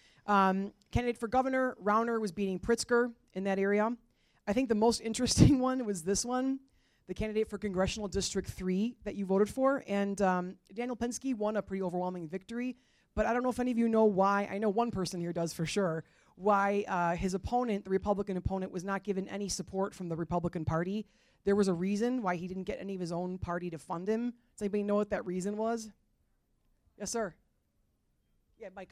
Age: 30-49